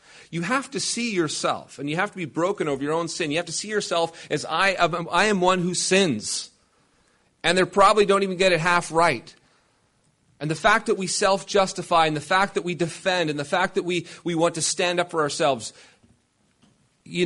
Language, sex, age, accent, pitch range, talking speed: English, male, 40-59, American, 125-175 Hz, 210 wpm